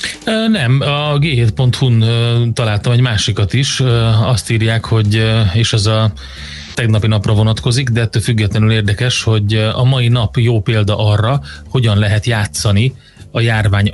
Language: Hungarian